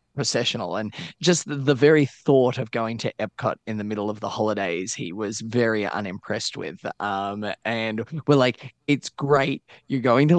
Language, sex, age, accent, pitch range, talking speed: English, male, 20-39, Australian, 110-145 Hz, 180 wpm